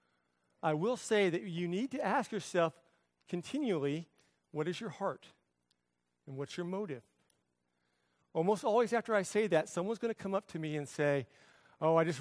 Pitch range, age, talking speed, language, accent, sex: 155-210 Hz, 40-59, 175 wpm, English, American, male